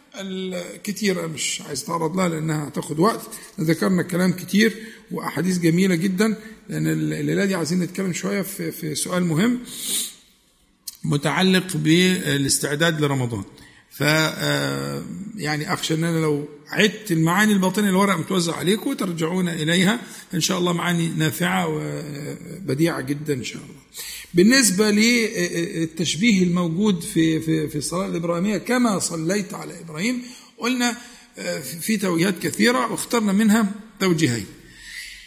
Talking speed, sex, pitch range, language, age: 110 wpm, male, 160-210 Hz, Arabic, 50-69